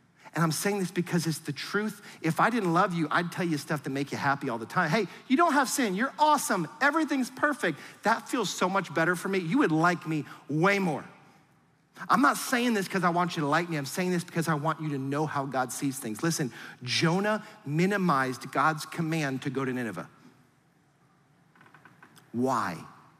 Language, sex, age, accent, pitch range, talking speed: English, male, 40-59, American, 150-190 Hz, 205 wpm